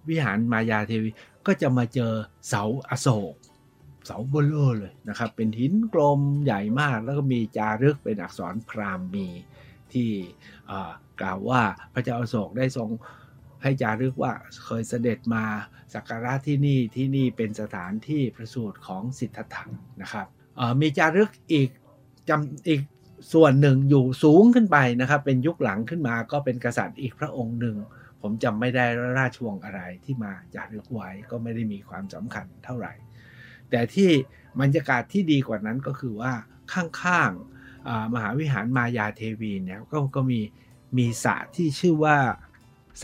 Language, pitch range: Thai, 110-140 Hz